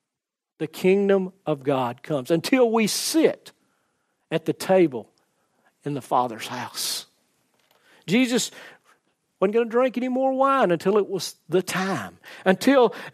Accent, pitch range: American, 150-240 Hz